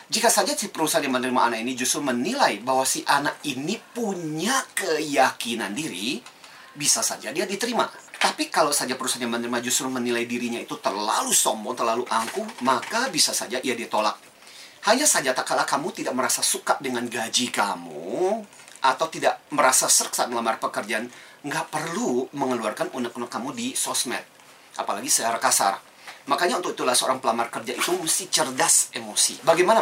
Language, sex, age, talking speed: Indonesian, male, 30-49, 155 wpm